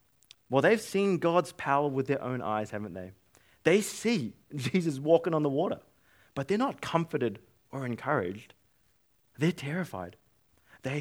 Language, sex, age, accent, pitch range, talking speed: English, male, 20-39, Australian, 110-170 Hz, 145 wpm